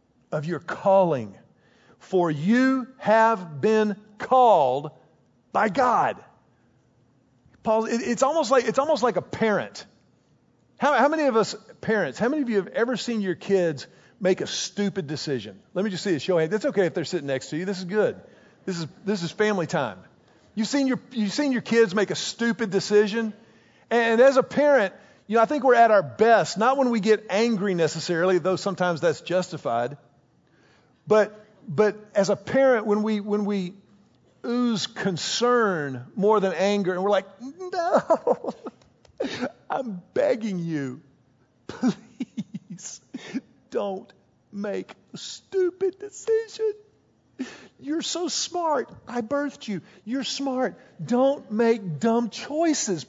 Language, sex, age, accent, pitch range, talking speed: English, male, 40-59, American, 175-245 Hz, 155 wpm